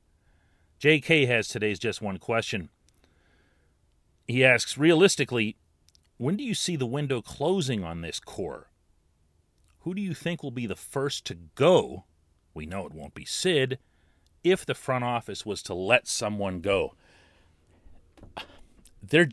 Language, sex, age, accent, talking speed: English, male, 40-59, American, 140 wpm